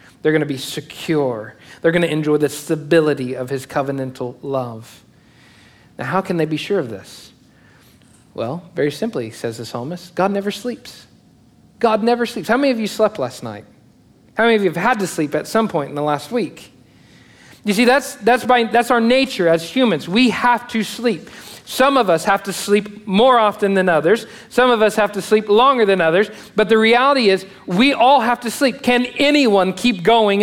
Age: 50-69